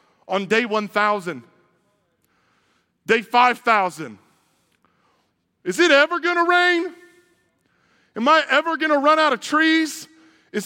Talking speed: 105 wpm